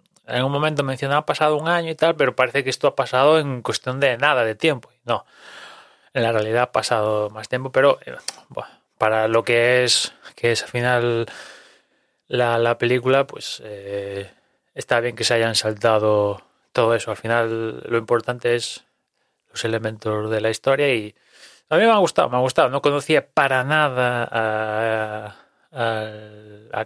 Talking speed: 175 wpm